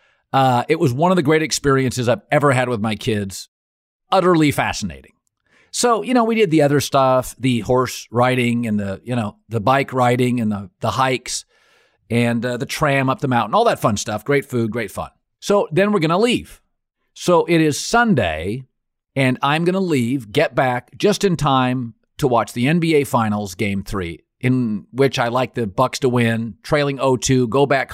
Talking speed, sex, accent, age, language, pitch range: 200 wpm, male, American, 40-59, English, 115-165 Hz